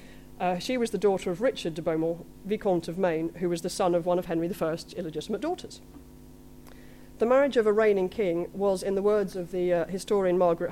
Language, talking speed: English, 215 wpm